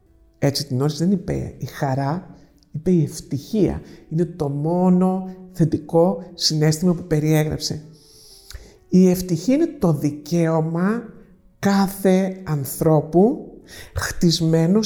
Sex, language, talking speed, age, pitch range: male, Greek, 100 wpm, 50-69, 160-195 Hz